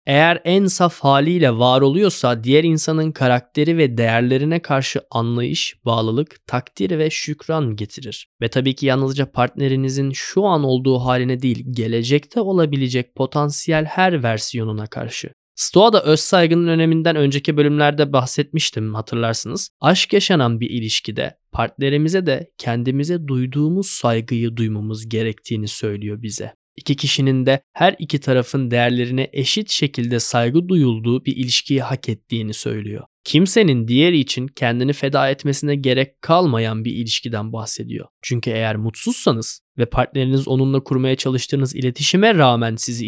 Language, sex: Turkish, male